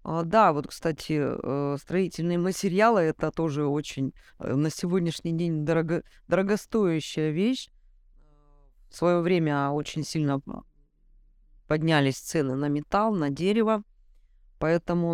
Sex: female